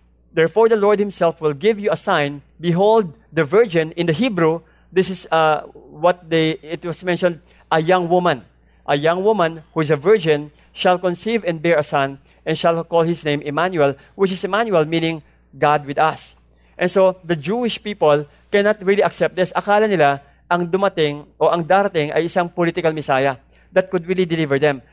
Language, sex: English, male